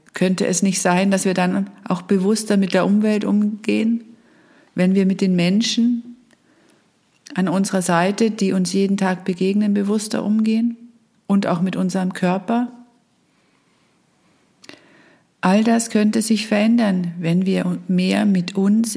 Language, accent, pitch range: German, German, 180-220 Hz